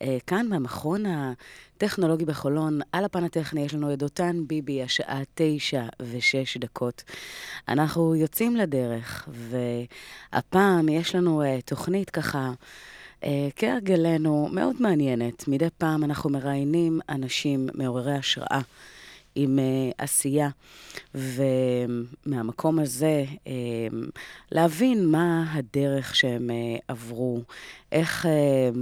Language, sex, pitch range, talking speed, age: Hebrew, female, 130-165 Hz, 90 wpm, 30-49